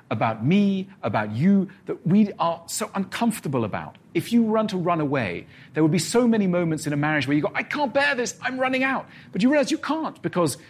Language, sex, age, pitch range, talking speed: Portuguese, male, 40-59, 130-195 Hz, 230 wpm